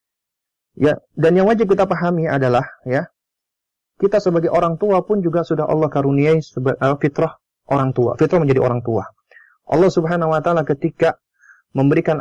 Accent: native